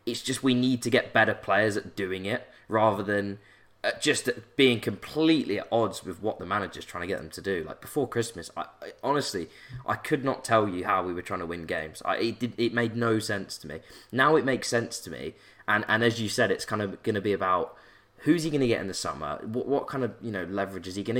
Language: English